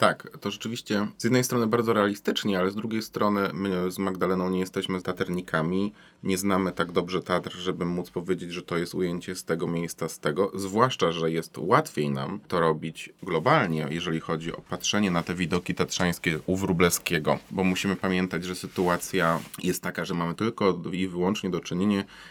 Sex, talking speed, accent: male, 185 wpm, native